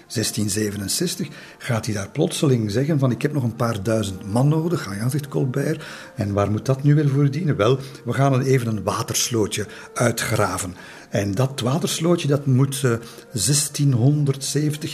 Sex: male